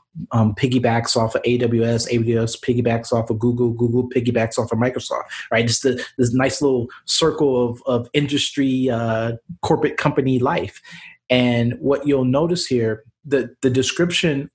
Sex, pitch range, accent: male, 115-135 Hz, American